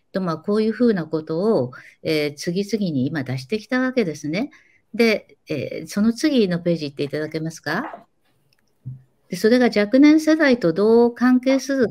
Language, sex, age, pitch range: Japanese, female, 60-79, 155-235 Hz